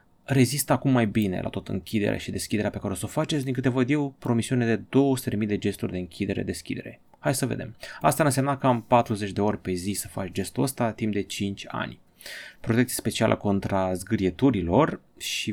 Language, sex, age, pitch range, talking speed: Romanian, male, 30-49, 95-130 Hz, 200 wpm